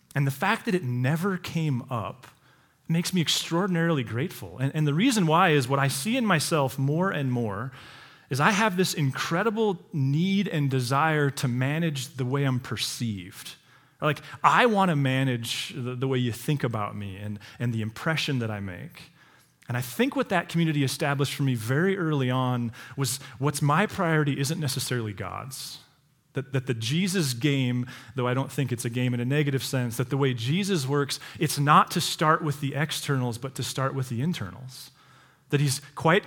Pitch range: 130-160 Hz